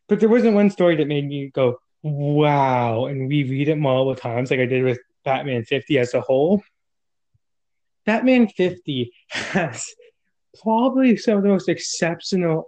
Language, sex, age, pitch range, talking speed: English, male, 20-39, 140-180 Hz, 160 wpm